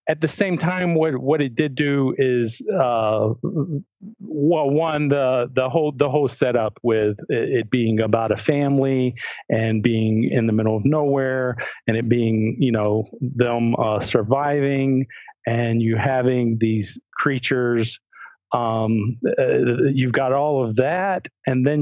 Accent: American